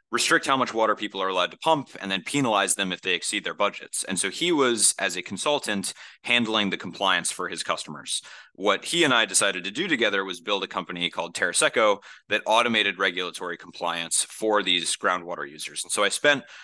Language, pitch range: English, 95-115 Hz